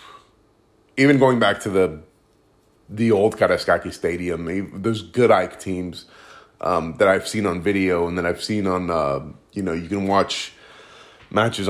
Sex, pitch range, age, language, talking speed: male, 95-125 Hz, 30-49, English, 165 wpm